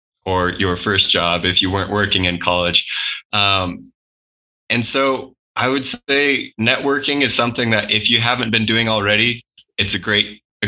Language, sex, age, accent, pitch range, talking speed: English, male, 20-39, American, 95-105 Hz, 170 wpm